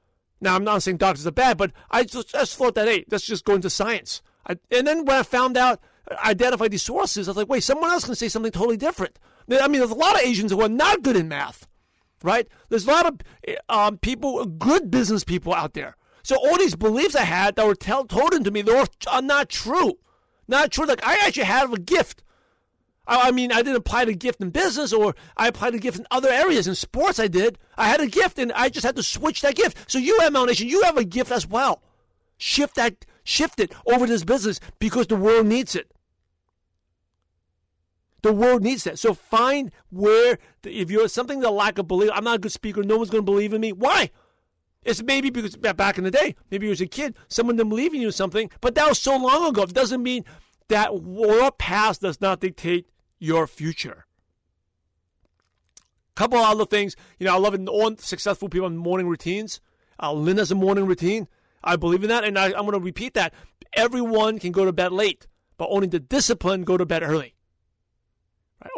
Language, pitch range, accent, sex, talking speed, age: English, 180-250 Hz, American, male, 220 wpm, 50-69